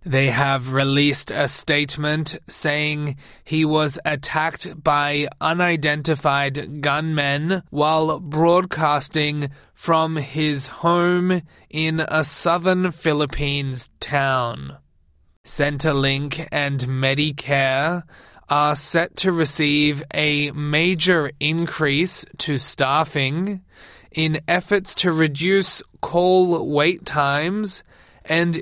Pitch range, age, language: 145-165 Hz, 20-39, English